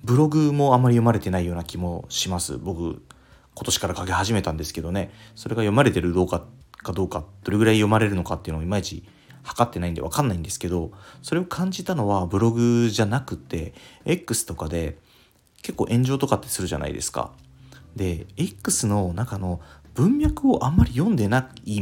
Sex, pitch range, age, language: male, 85-115 Hz, 30-49, Japanese